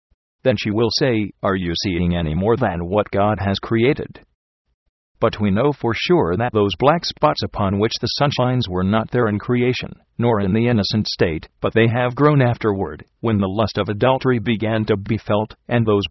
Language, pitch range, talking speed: English, 100-120 Hz, 200 wpm